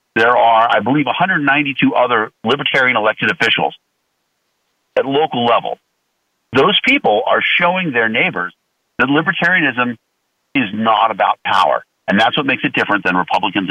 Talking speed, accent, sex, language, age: 140 wpm, American, male, English, 50-69